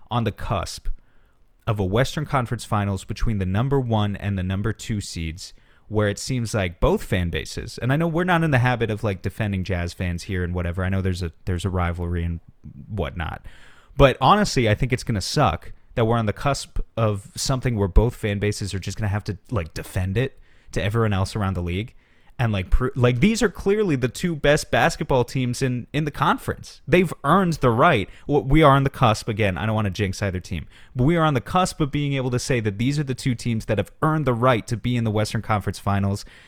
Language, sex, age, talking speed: English, male, 30-49, 235 wpm